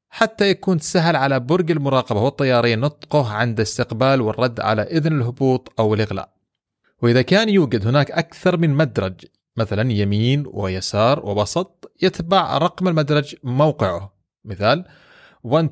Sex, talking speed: male, 120 wpm